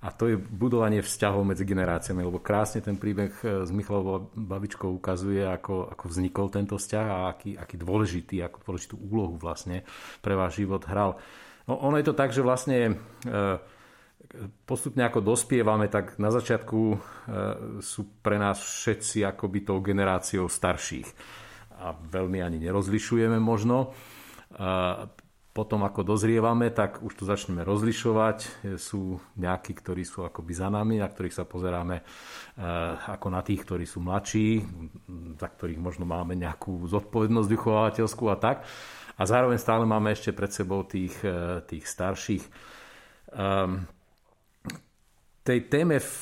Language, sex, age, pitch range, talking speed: Slovak, male, 50-69, 95-110 Hz, 140 wpm